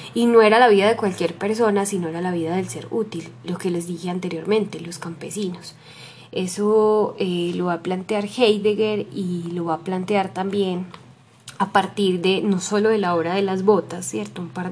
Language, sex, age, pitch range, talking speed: Spanish, female, 10-29, 185-225 Hz, 200 wpm